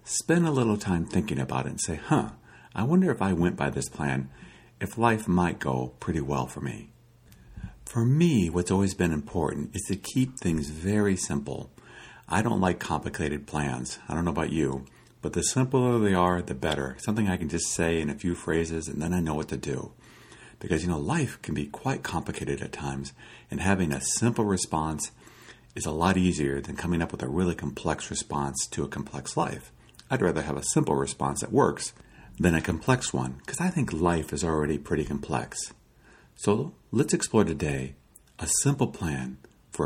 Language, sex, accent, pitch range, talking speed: English, male, American, 70-115 Hz, 195 wpm